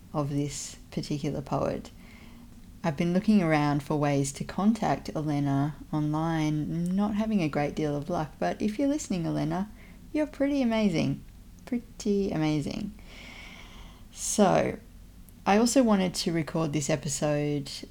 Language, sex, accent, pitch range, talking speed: English, female, Australian, 140-165 Hz, 130 wpm